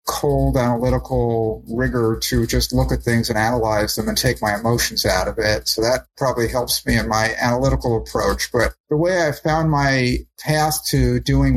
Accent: American